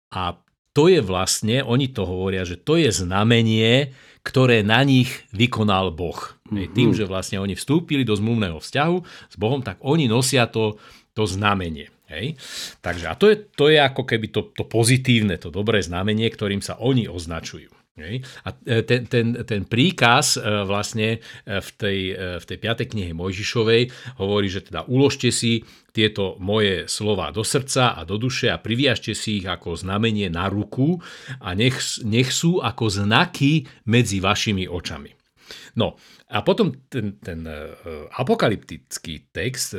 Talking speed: 155 wpm